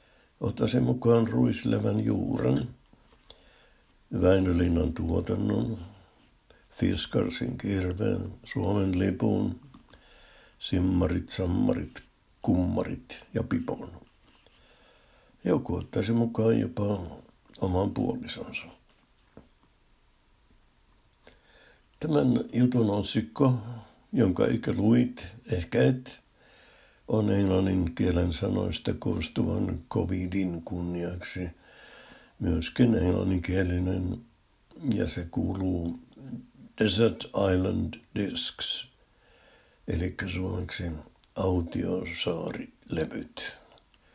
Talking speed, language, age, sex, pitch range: 65 wpm, Finnish, 60-79, male, 90-110 Hz